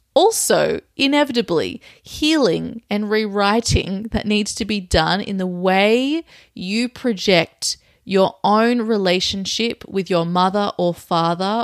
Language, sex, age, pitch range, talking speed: English, female, 30-49, 175-225 Hz, 120 wpm